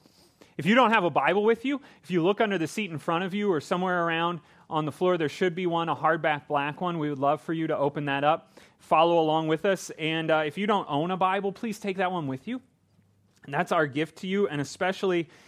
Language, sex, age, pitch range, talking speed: English, male, 30-49, 140-180 Hz, 260 wpm